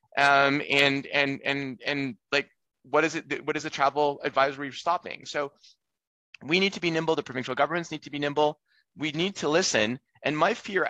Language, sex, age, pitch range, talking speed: English, male, 30-49, 140-160 Hz, 195 wpm